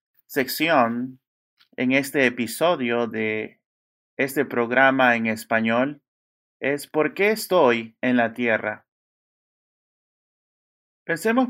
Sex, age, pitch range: male, 30-49, 110-140 Hz